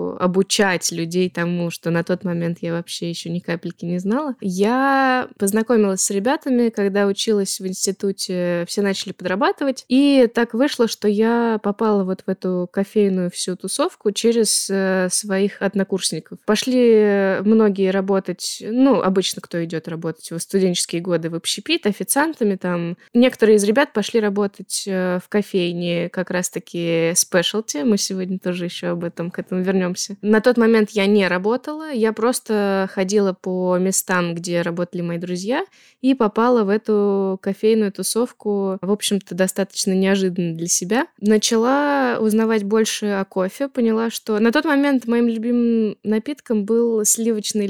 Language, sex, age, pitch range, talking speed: Russian, female, 20-39, 185-225 Hz, 145 wpm